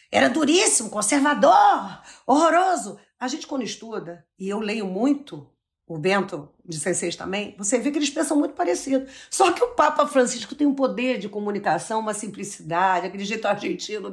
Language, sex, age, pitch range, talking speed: Portuguese, female, 50-69, 185-270 Hz, 165 wpm